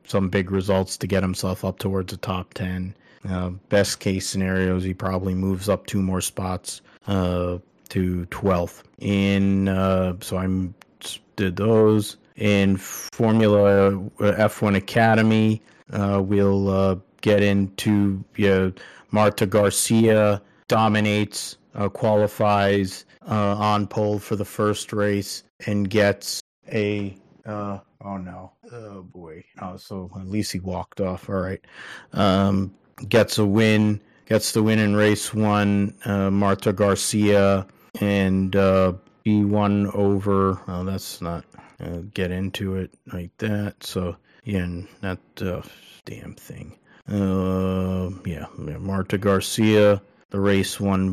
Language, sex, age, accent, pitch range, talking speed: English, male, 30-49, American, 95-105 Hz, 130 wpm